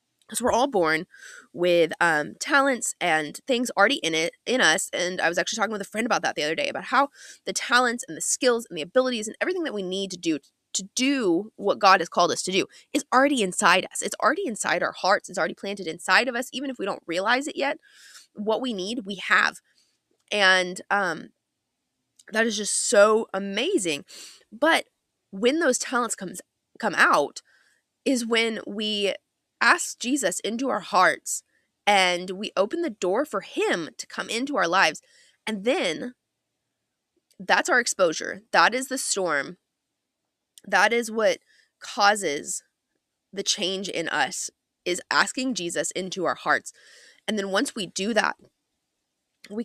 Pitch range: 190-255 Hz